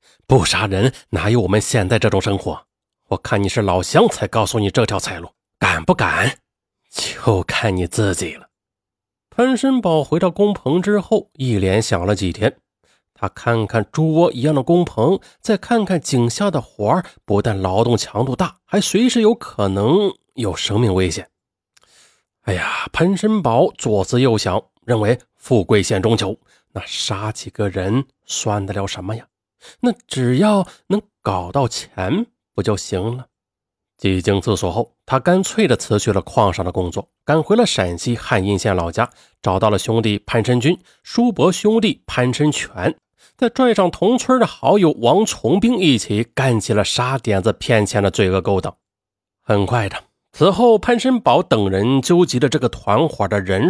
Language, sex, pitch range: Chinese, male, 100-165 Hz